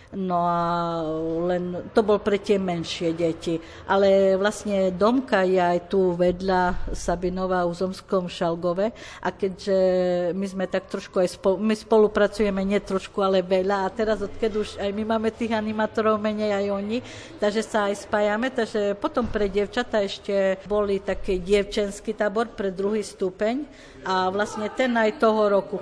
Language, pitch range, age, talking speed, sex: Slovak, 185-210 Hz, 50-69, 155 wpm, female